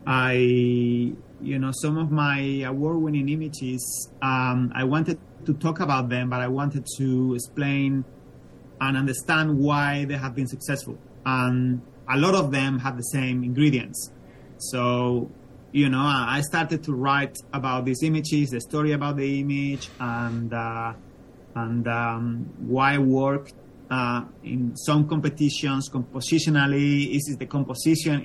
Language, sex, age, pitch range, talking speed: English, male, 30-49, 125-150 Hz, 145 wpm